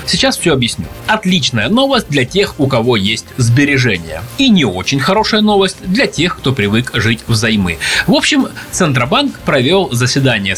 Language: Russian